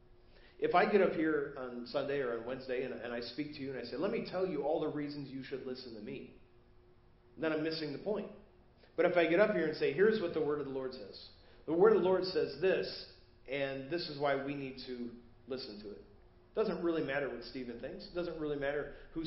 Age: 40-59